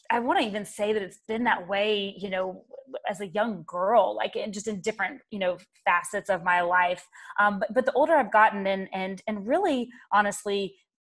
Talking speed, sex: 210 wpm, female